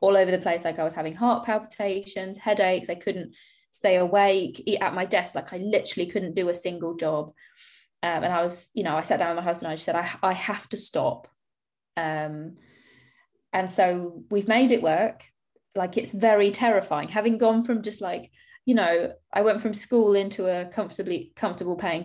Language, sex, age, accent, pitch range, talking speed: English, female, 20-39, British, 175-215 Hz, 200 wpm